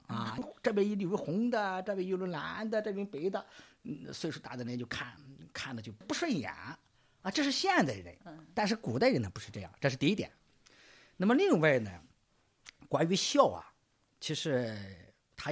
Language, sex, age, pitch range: Chinese, male, 50-69, 115-185 Hz